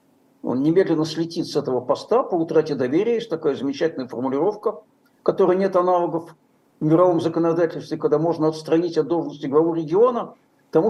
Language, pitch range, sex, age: Russian, 155-210 Hz, male, 60-79